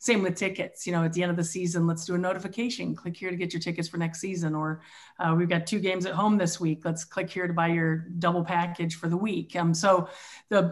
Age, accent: 40-59, American